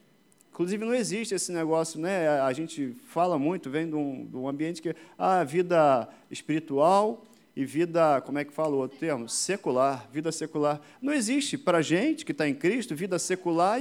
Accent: Brazilian